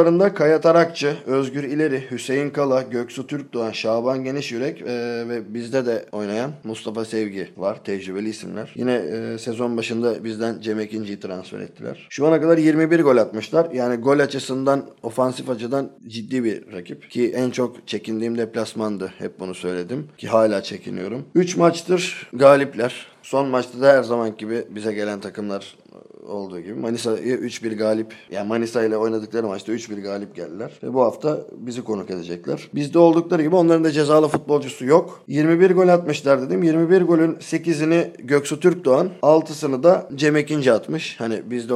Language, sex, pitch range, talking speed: Turkish, male, 110-150 Hz, 150 wpm